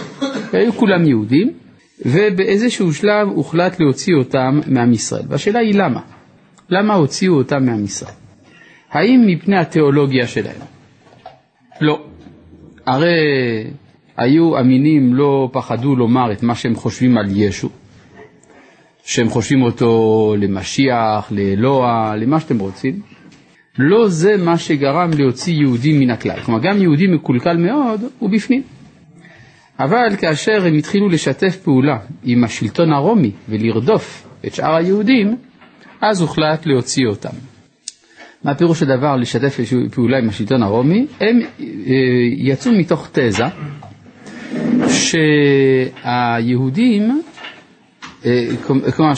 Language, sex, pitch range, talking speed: Hebrew, male, 125-190 Hz, 105 wpm